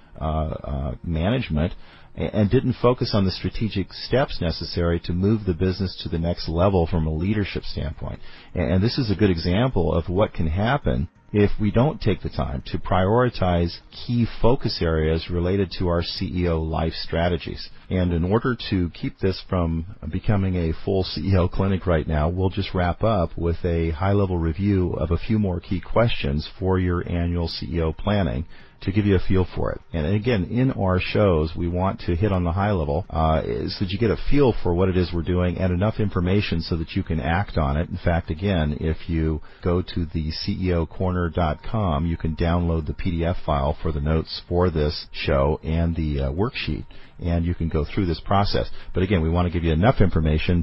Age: 40-59